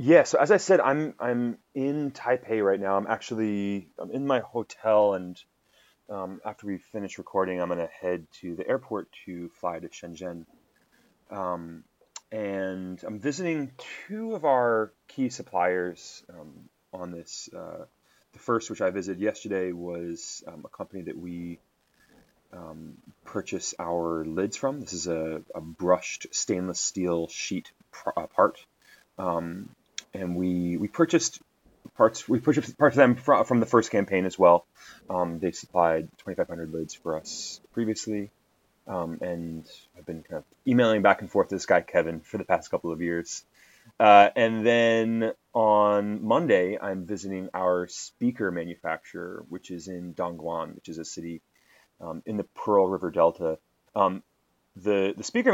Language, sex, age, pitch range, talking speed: English, male, 30-49, 85-115 Hz, 160 wpm